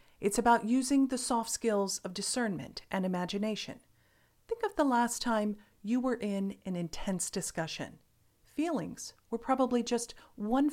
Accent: American